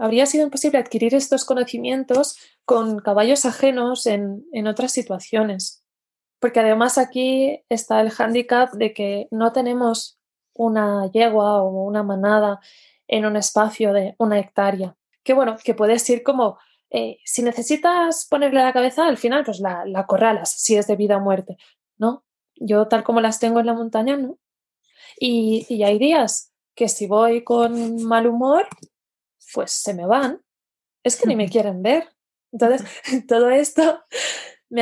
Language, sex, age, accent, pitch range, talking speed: Spanish, female, 20-39, Spanish, 210-250 Hz, 160 wpm